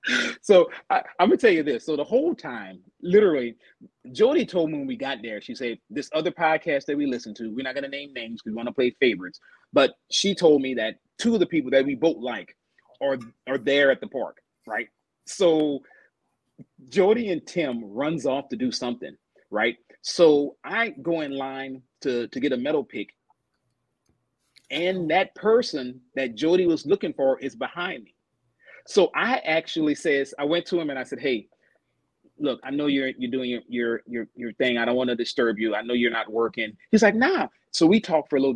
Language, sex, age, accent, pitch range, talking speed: English, male, 30-49, American, 130-195 Hz, 205 wpm